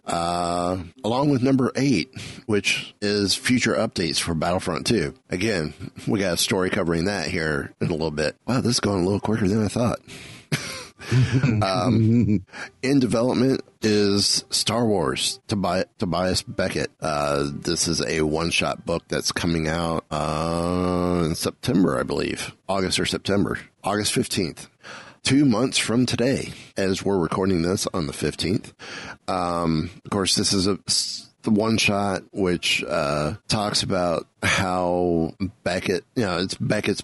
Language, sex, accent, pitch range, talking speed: English, male, American, 85-105 Hz, 145 wpm